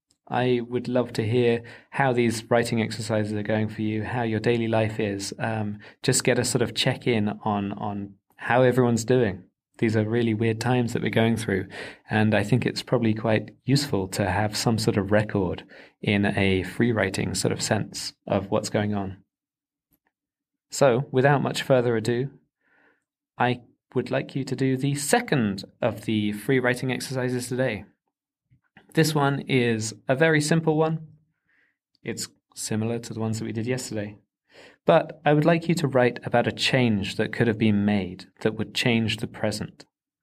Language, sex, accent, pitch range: English, male, British, 110-130 Hz